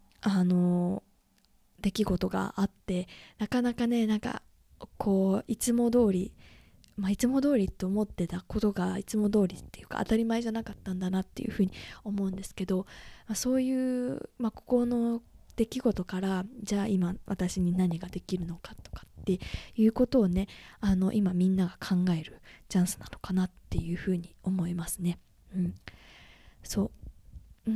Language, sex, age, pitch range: Japanese, female, 20-39, 190-230 Hz